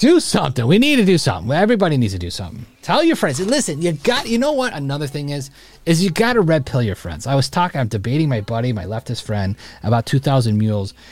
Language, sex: English, male